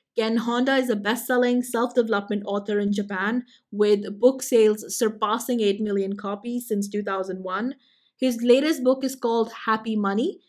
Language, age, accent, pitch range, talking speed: English, 20-39, Indian, 210-245 Hz, 145 wpm